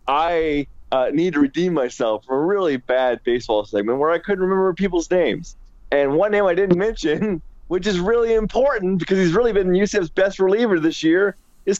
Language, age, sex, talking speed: English, 30-49, male, 195 wpm